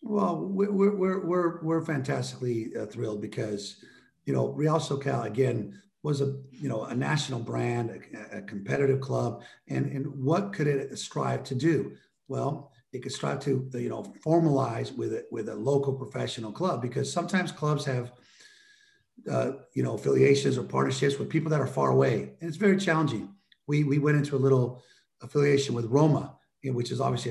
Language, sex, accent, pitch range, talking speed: English, male, American, 120-155 Hz, 175 wpm